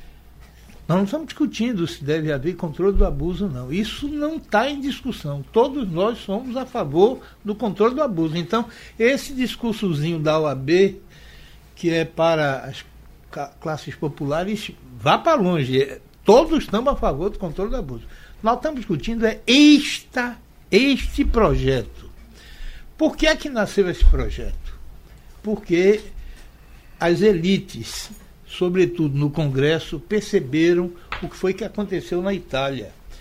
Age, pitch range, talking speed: 60-79, 155-225 Hz, 135 wpm